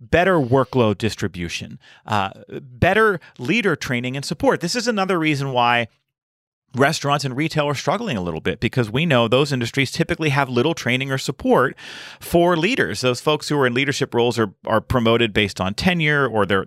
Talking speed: 180 wpm